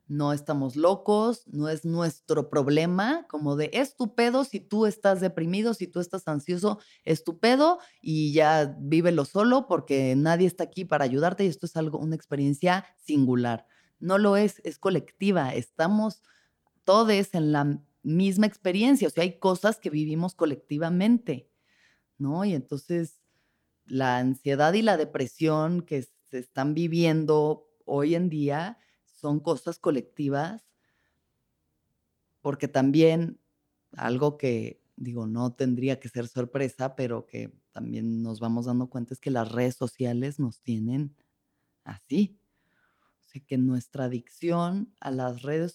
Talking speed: 140 wpm